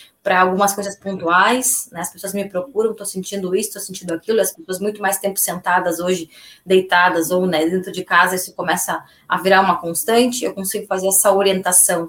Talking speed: 195 wpm